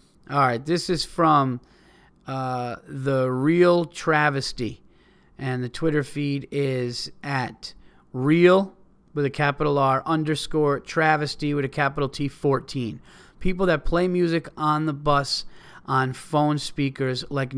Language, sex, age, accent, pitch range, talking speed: English, male, 30-49, American, 125-150 Hz, 125 wpm